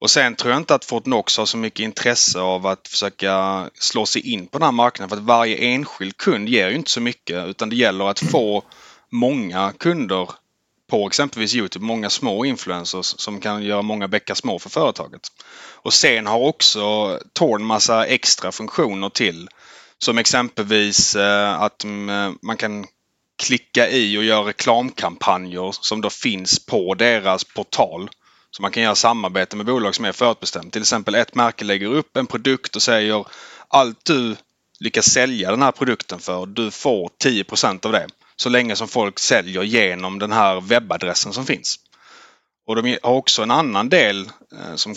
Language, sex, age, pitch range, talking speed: Swedish, male, 30-49, 95-115 Hz, 170 wpm